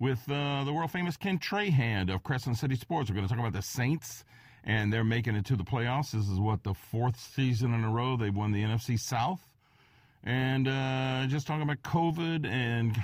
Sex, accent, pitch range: male, American, 120-190 Hz